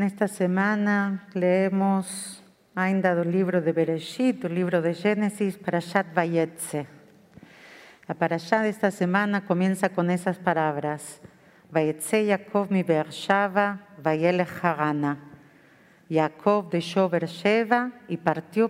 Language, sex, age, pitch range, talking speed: Portuguese, female, 50-69, 165-205 Hz, 105 wpm